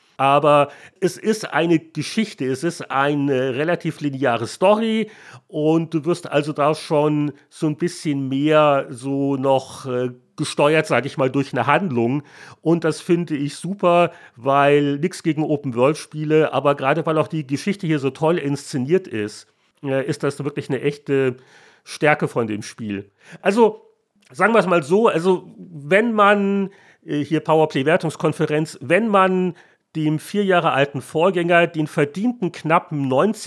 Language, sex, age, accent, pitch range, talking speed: German, male, 40-59, German, 140-175 Hz, 150 wpm